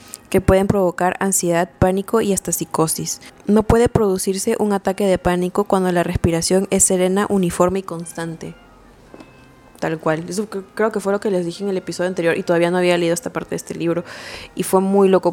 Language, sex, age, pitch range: Spanish, female, 20-39, 170-200 Hz